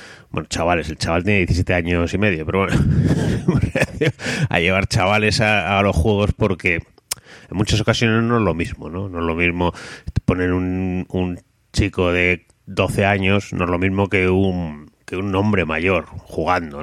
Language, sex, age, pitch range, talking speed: English, male, 30-49, 90-105 Hz, 175 wpm